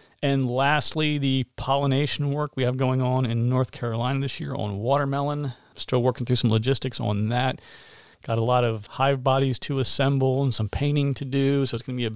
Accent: American